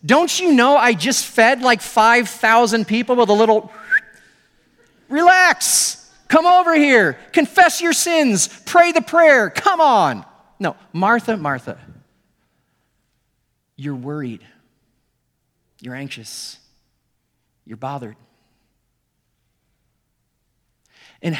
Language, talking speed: English, 95 wpm